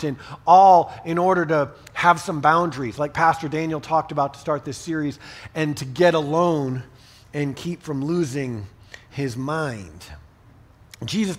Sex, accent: male, American